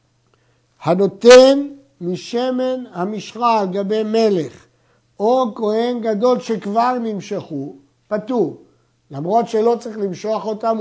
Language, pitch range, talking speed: Hebrew, 175-245 Hz, 95 wpm